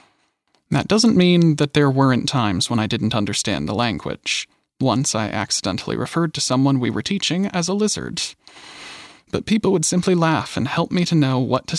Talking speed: 190 wpm